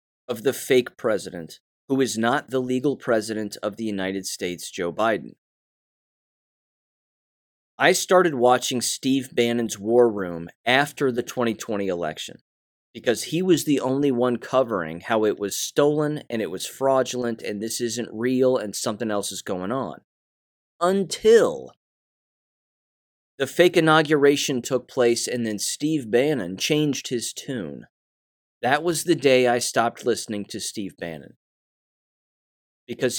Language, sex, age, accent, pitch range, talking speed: English, male, 30-49, American, 115-145 Hz, 135 wpm